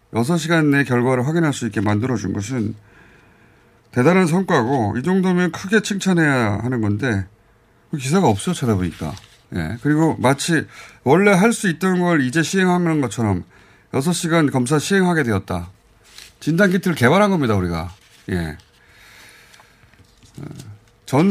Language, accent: Korean, native